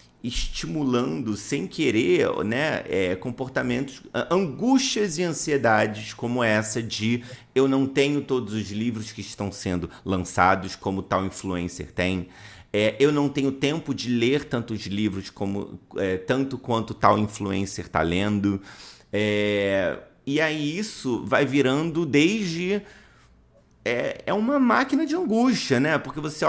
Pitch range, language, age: 100-145 Hz, Portuguese, 30-49